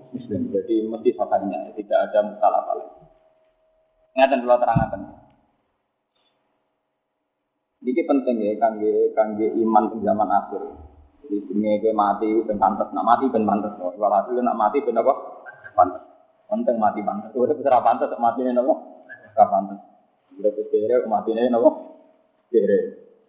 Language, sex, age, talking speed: Indonesian, male, 30-49, 70 wpm